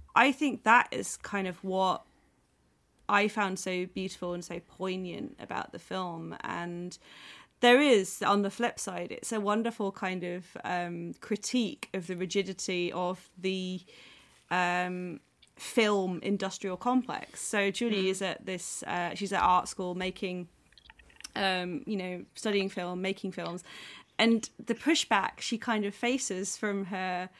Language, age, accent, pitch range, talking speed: English, 30-49, British, 180-220 Hz, 145 wpm